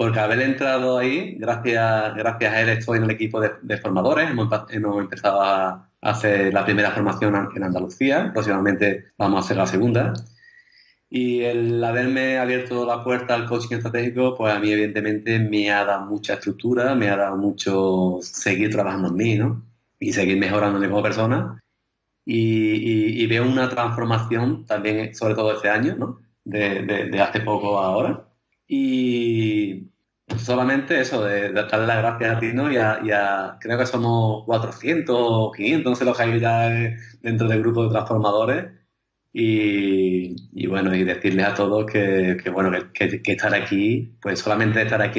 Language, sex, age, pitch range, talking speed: Spanish, male, 30-49, 100-115 Hz, 175 wpm